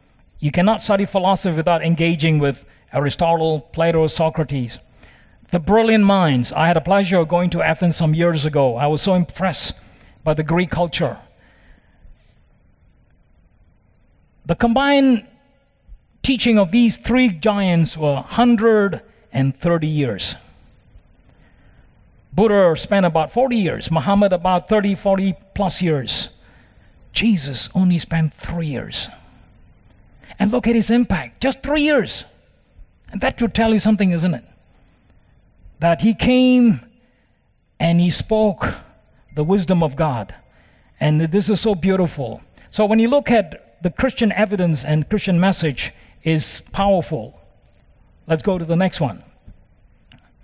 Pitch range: 135-205 Hz